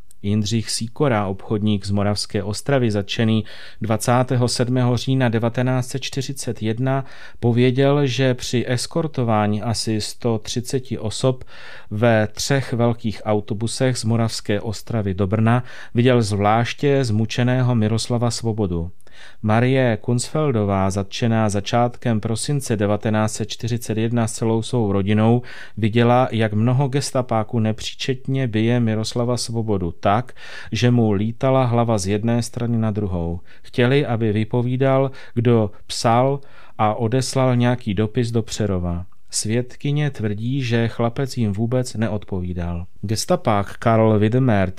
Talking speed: 105 wpm